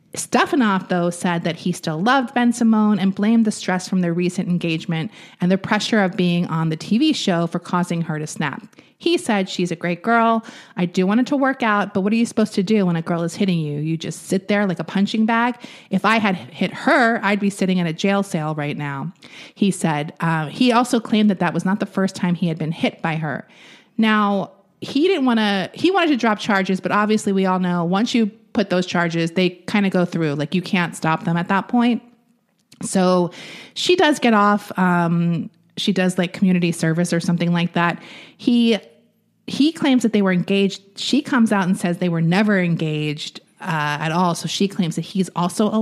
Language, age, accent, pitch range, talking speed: English, 30-49, American, 175-220 Hz, 225 wpm